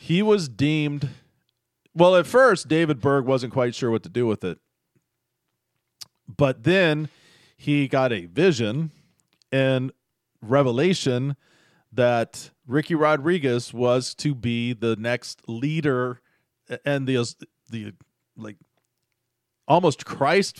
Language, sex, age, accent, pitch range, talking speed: English, male, 40-59, American, 120-165 Hz, 115 wpm